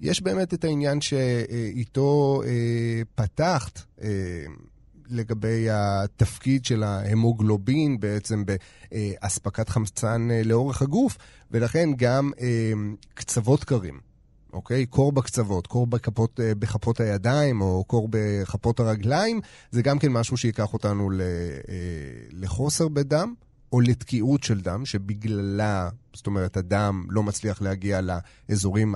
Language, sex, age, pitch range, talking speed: Hebrew, male, 30-49, 100-125 Hz, 105 wpm